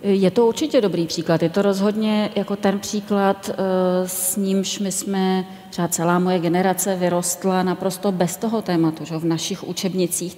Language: Czech